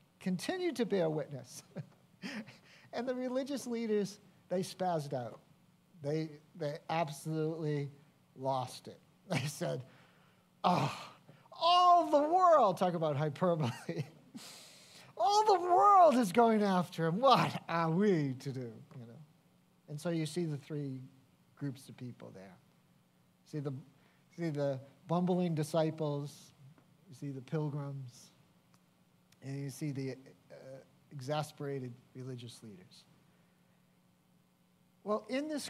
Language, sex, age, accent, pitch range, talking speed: English, male, 50-69, American, 145-180 Hz, 120 wpm